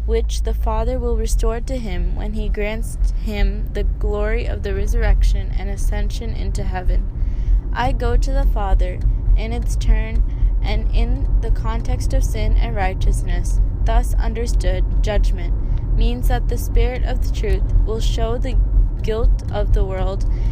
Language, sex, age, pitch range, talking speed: English, female, 20-39, 95-115 Hz, 155 wpm